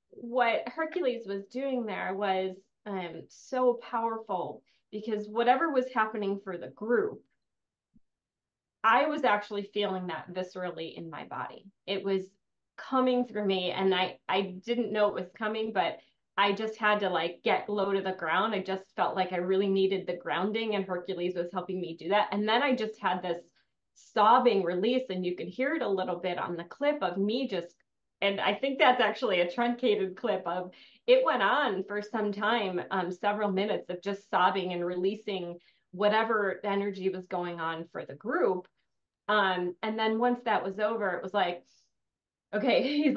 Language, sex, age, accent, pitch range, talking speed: English, female, 30-49, American, 185-220 Hz, 180 wpm